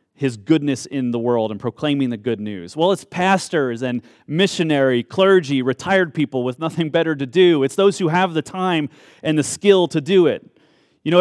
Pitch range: 130-175 Hz